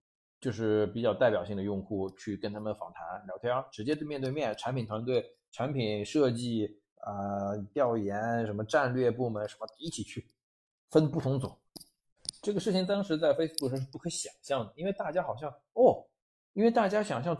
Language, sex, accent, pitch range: Chinese, male, native, 110-170 Hz